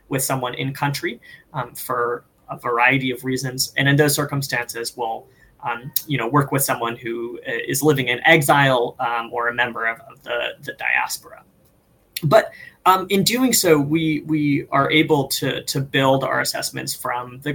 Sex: male